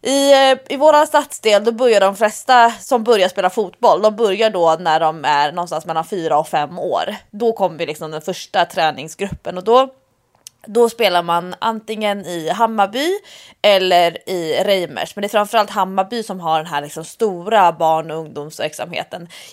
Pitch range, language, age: 170-230 Hz, English, 20-39